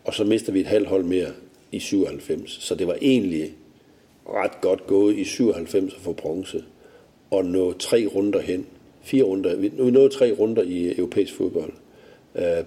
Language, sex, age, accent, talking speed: Danish, male, 60-79, native, 175 wpm